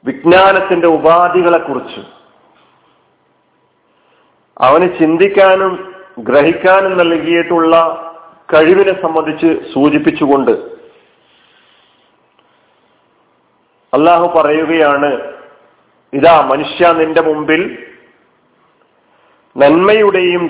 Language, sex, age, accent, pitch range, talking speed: Malayalam, male, 40-59, native, 160-205 Hz, 45 wpm